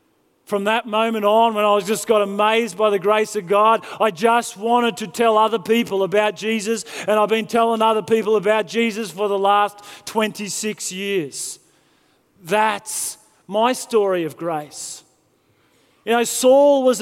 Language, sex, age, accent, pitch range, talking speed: English, male, 30-49, Australian, 215-245 Hz, 160 wpm